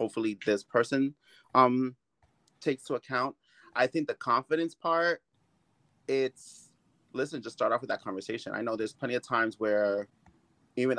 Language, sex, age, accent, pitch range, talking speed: English, male, 30-49, American, 110-140 Hz, 155 wpm